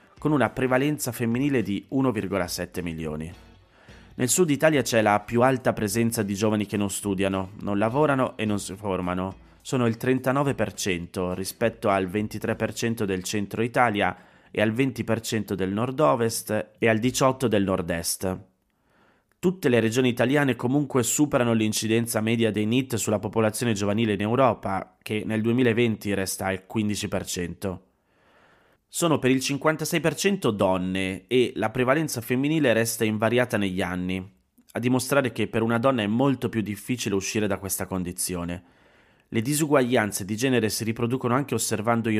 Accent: native